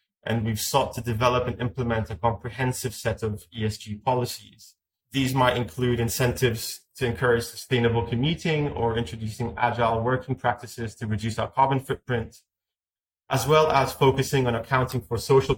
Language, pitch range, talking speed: English, 110-130 Hz, 150 wpm